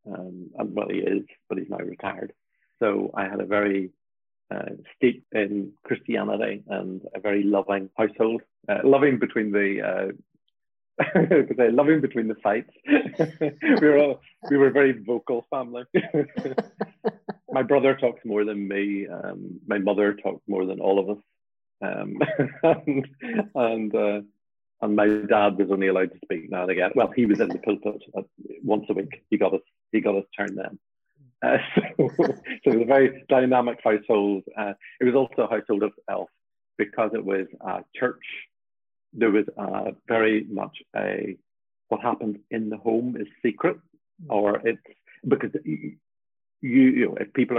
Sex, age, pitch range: male, 30-49, 100-125 Hz